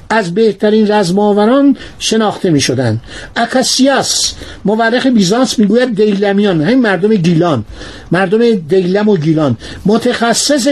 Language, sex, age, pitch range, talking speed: Persian, male, 60-79, 170-230 Hz, 100 wpm